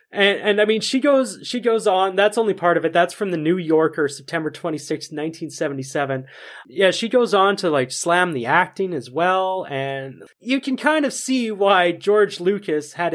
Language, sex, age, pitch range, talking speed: English, male, 30-49, 150-210 Hz, 195 wpm